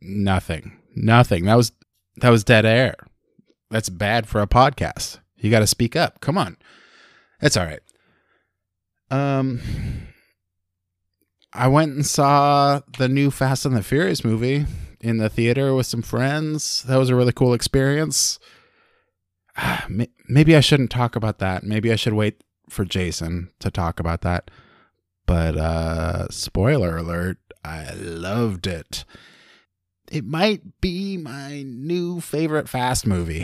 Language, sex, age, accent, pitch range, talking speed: English, male, 20-39, American, 95-135 Hz, 140 wpm